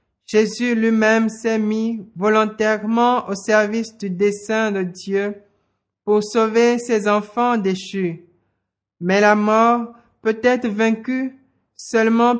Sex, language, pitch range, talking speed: male, French, 205-235 Hz, 110 wpm